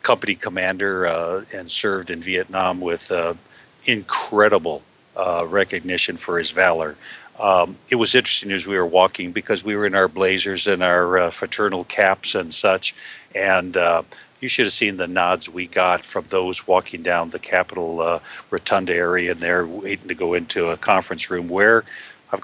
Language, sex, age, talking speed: English, male, 50-69, 175 wpm